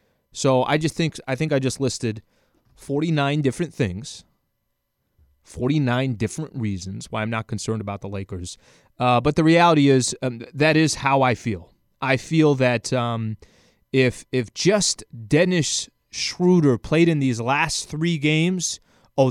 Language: English